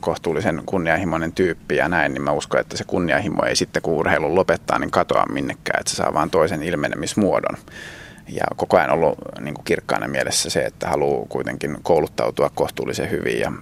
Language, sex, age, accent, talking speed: Finnish, male, 30-49, native, 180 wpm